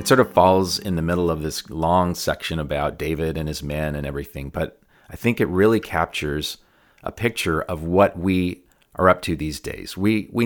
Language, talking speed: English, 205 wpm